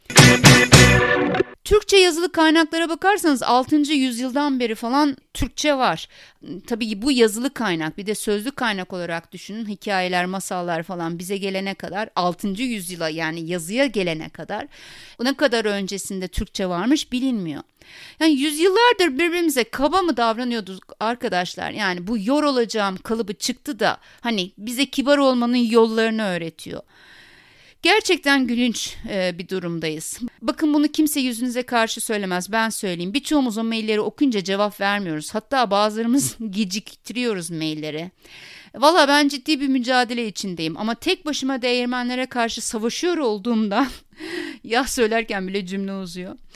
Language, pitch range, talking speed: Turkish, 195-280 Hz, 130 wpm